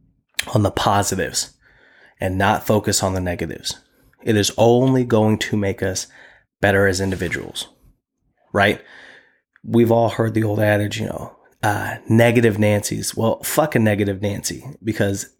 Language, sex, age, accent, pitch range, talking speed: English, male, 30-49, American, 100-120 Hz, 145 wpm